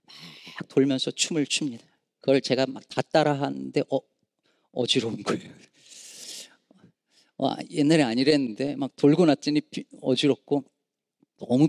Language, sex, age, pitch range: Korean, male, 40-59, 130-210 Hz